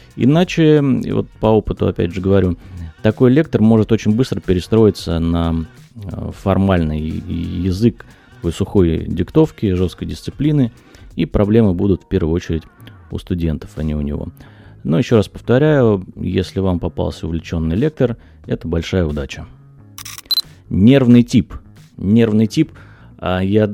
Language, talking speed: Russian, 125 wpm